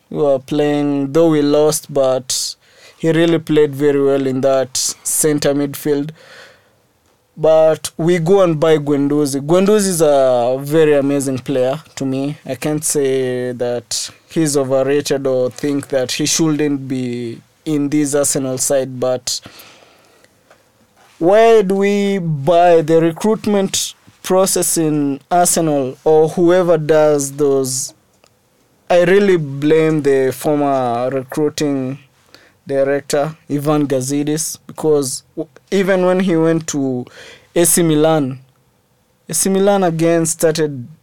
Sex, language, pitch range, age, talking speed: male, English, 135-165 Hz, 20-39, 120 wpm